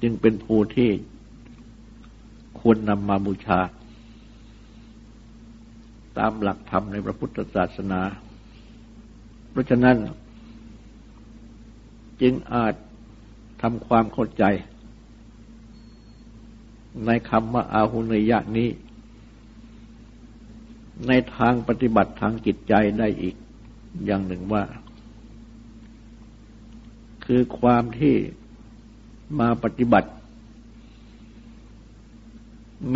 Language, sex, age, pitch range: Thai, male, 60-79, 110-115 Hz